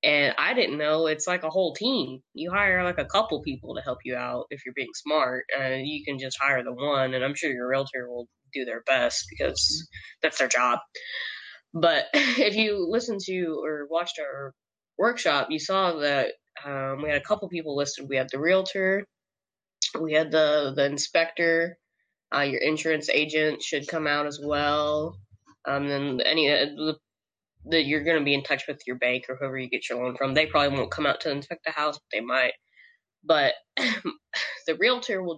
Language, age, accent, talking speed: English, 10-29, American, 200 wpm